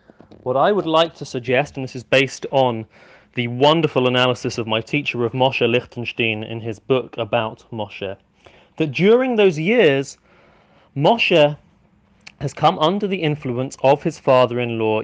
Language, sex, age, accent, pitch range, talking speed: English, male, 30-49, British, 125-165 Hz, 150 wpm